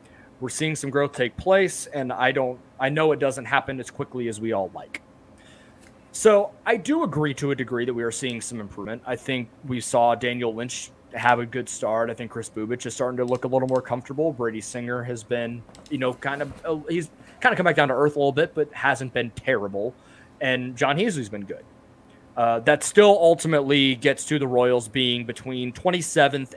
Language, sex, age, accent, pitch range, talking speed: English, male, 20-39, American, 120-160 Hz, 210 wpm